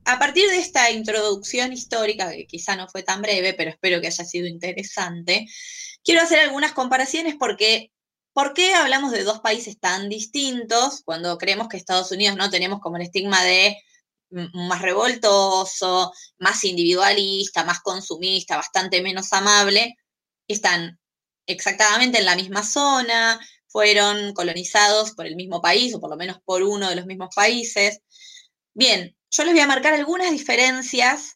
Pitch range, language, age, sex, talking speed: 185-255 Hz, Spanish, 20-39, female, 155 wpm